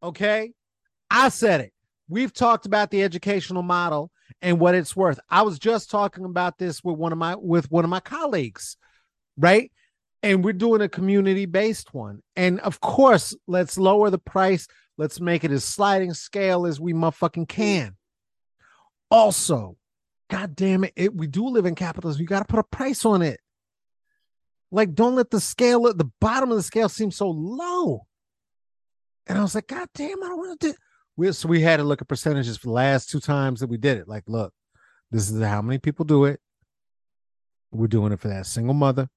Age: 30-49